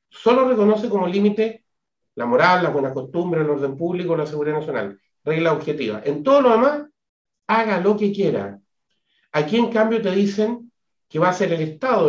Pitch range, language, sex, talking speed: 155-210 Hz, Spanish, male, 180 wpm